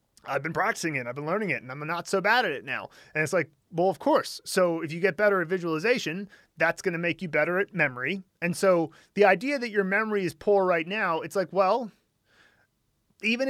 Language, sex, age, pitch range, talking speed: English, male, 30-49, 155-190 Hz, 230 wpm